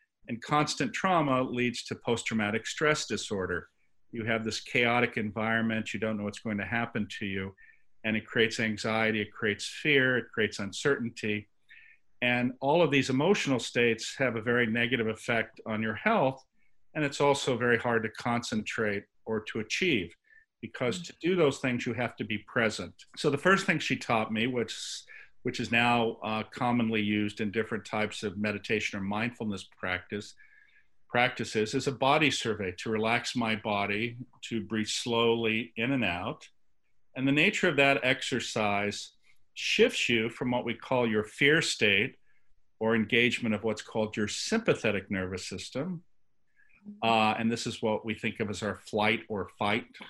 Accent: American